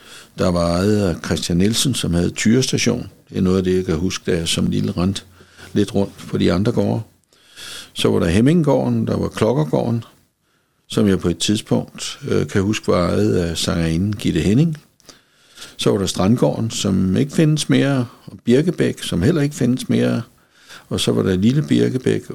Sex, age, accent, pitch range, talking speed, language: male, 60-79, native, 95-120 Hz, 185 wpm, Danish